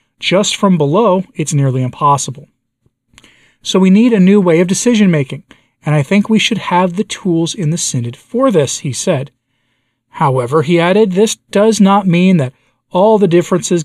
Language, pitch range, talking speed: English, 135-190 Hz, 175 wpm